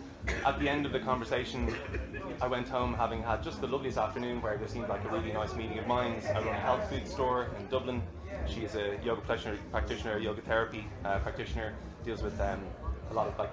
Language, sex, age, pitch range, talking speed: English, male, 20-39, 100-125 Hz, 220 wpm